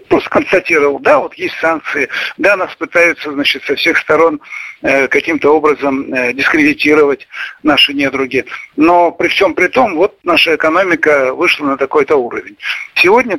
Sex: male